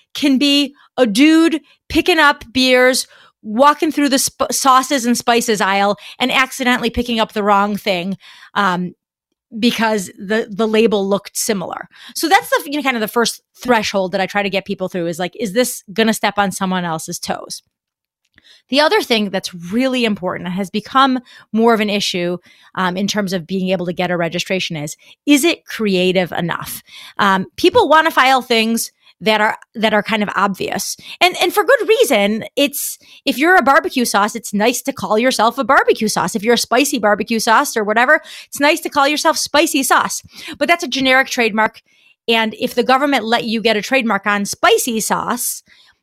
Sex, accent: female, American